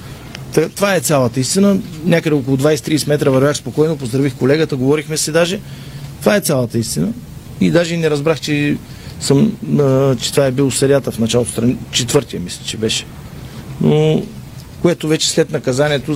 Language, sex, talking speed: Bulgarian, male, 150 wpm